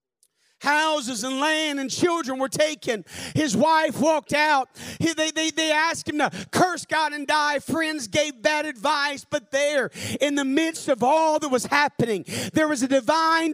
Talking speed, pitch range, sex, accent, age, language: 175 wpm, 305-370 Hz, male, American, 40-59, English